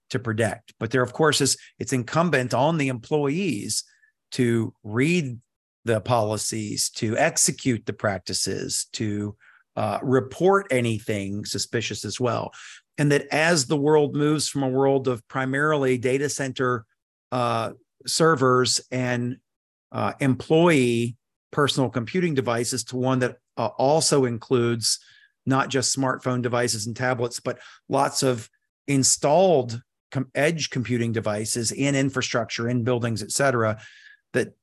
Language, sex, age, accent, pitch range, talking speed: English, male, 40-59, American, 115-140 Hz, 130 wpm